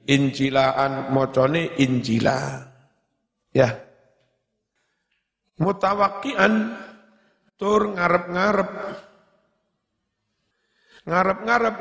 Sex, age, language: male, 50-69, Indonesian